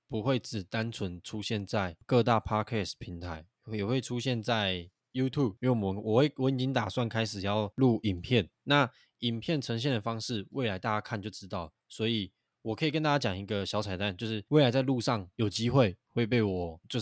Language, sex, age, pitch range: Chinese, male, 20-39, 100-120 Hz